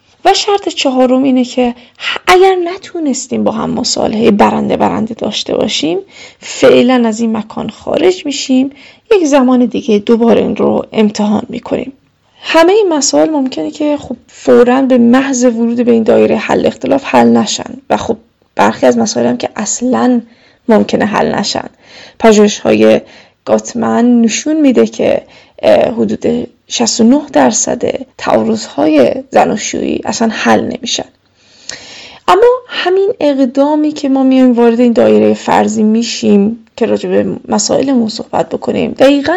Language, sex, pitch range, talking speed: Persian, female, 230-295 Hz, 135 wpm